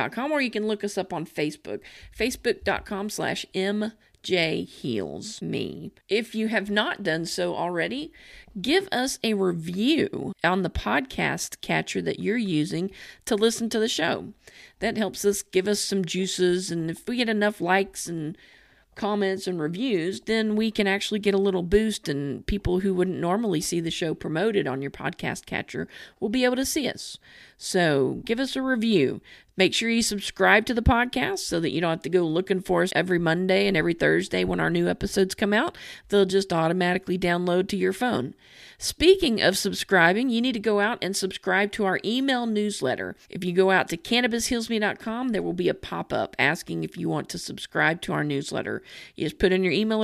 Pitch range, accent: 175-220 Hz, American